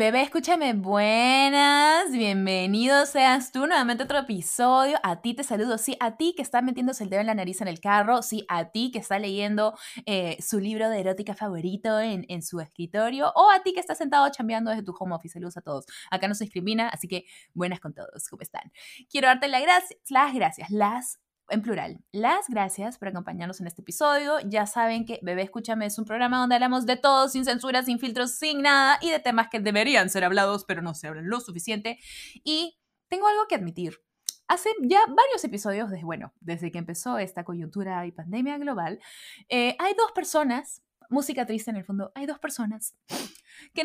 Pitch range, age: 195-275 Hz, 20-39